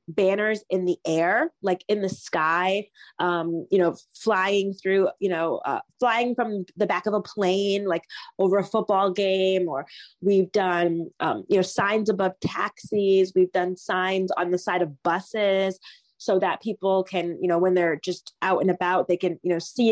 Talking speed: 185 wpm